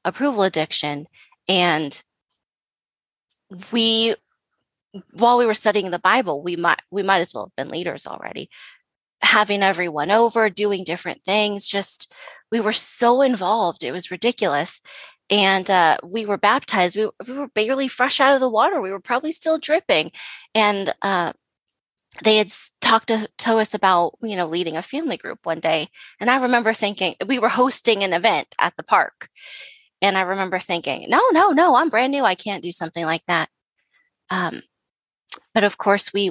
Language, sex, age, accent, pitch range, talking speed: English, female, 20-39, American, 180-235 Hz, 170 wpm